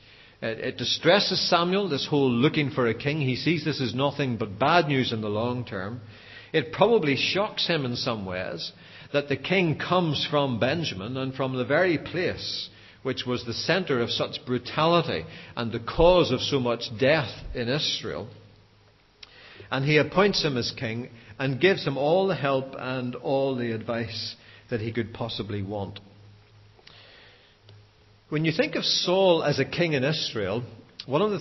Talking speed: 170 wpm